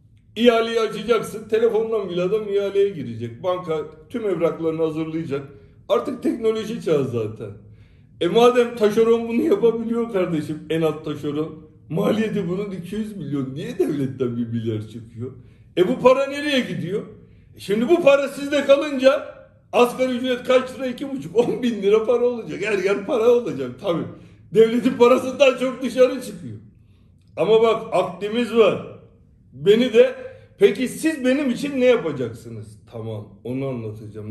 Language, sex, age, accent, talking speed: Turkish, male, 60-79, native, 135 wpm